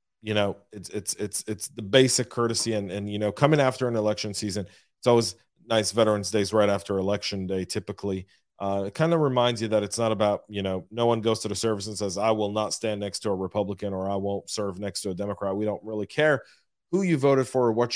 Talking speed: 245 wpm